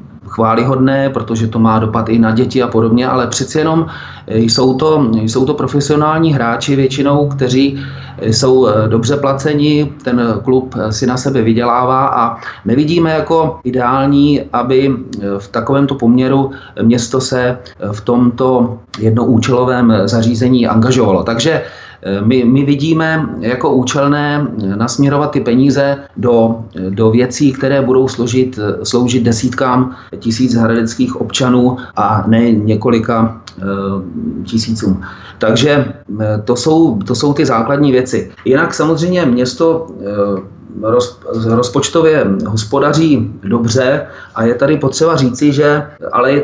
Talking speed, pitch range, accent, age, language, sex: 115 wpm, 115-140 Hz, native, 30-49, Czech, male